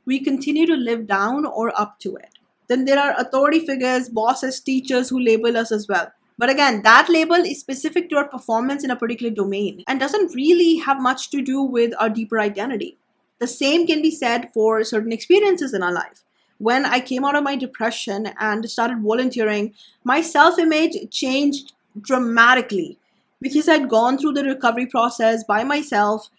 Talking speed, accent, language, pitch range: 180 wpm, Indian, English, 215-275 Hz